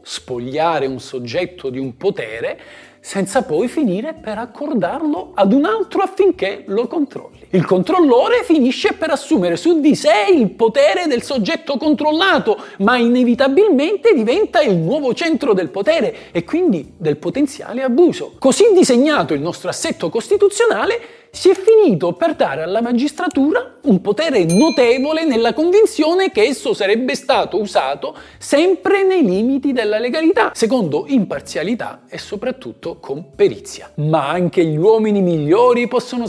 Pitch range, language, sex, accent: 215-350 Hz, Italian, male, native